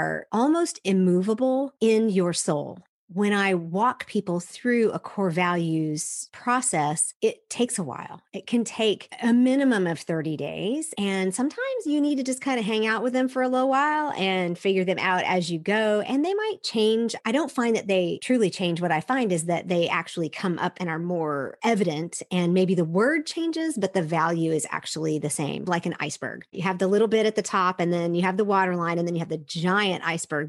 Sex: female